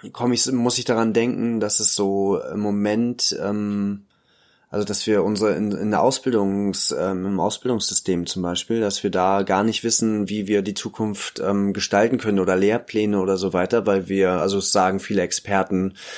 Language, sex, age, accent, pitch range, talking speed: German, male, 20-39, German, 95-105 Hz, 185 wpm